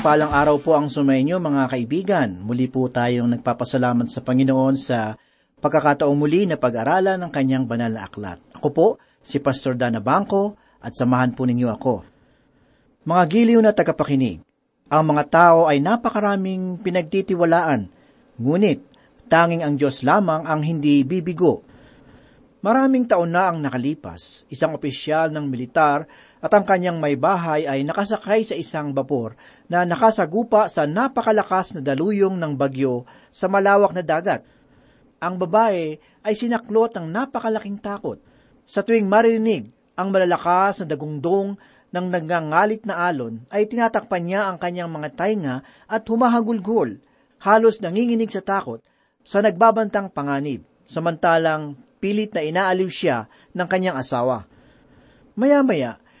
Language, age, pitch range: Filipino, 40-59, 140-200 Hz